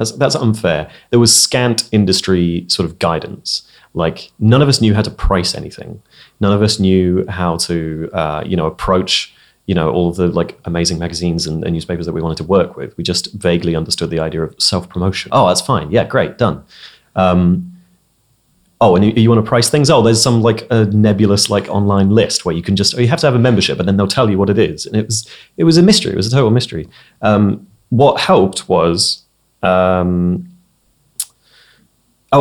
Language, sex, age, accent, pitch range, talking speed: English, male, 30-49, British, 90-110 Hz, 210 wpm